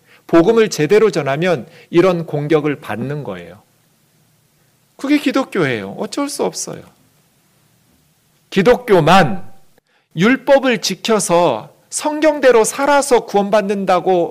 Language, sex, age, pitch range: Korean, male, 40-59, 160-240 Hz